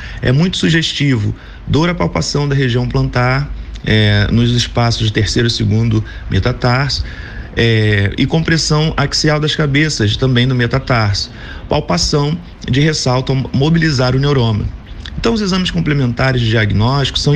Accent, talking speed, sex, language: Brazilian, 130 wpm, male, Portuguese